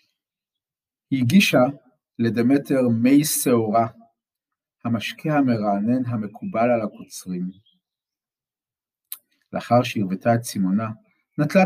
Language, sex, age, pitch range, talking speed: Hebrew, male, 50-69, 110-145 Hz, 75 wpm